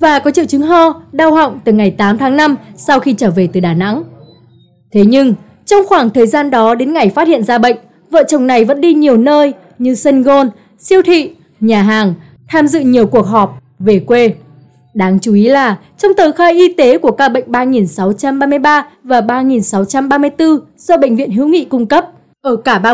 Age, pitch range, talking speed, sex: 20-39, 215-295 Hz, 205 wpm, female